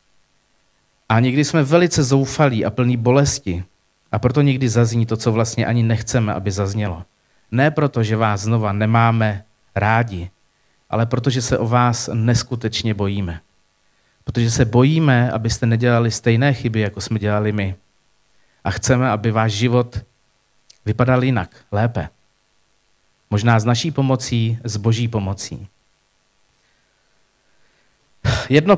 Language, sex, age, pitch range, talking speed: Czech, male, 40-59, 110-140 Hz, 125 wpm